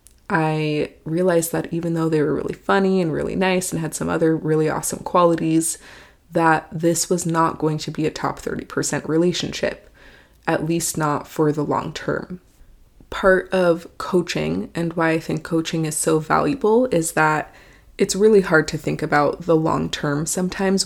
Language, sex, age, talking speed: English, female, 20-39, 175 wpm